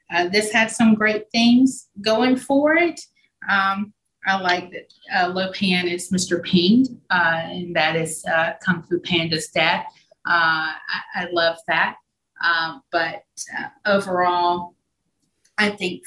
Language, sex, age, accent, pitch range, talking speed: English, female, 30-49, American, 165-185 Hz, 145 wpm